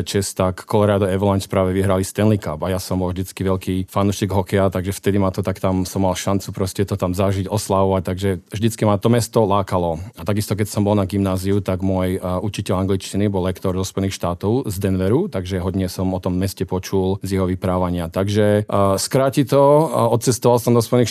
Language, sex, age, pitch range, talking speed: Slovak, male, 40-59, 95-105 Hz, 210 wpm